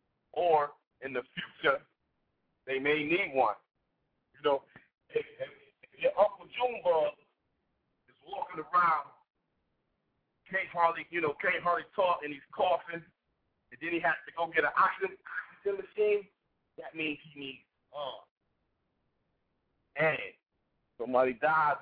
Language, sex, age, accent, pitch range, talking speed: English, male, 40-59, American, 130-175 Hz, 130 wpm